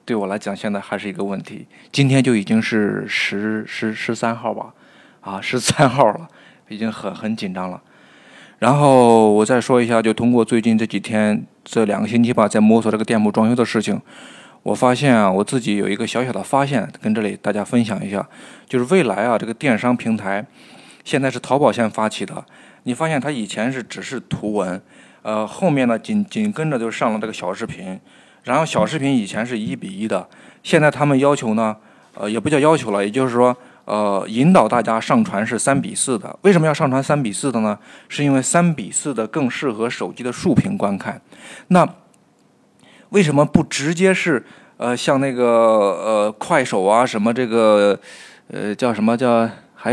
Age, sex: 20-39, male